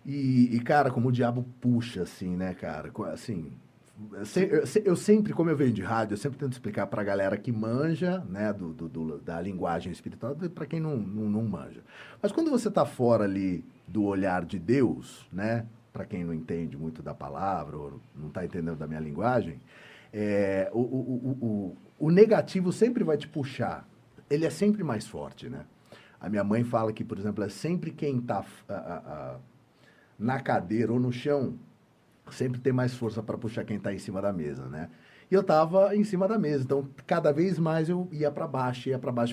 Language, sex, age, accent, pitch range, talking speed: Portuguese, male, 40-59, Brazilian, 100-150 Hz, 200 wpm